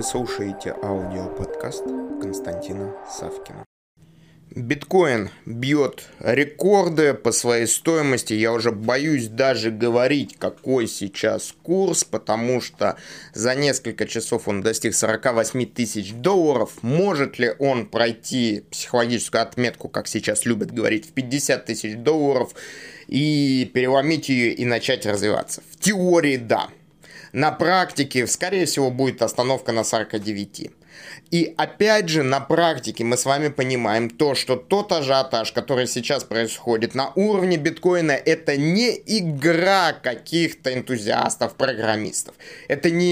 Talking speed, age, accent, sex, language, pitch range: 120 wpm, 20-39, native, male, Russian, 115-160 Hz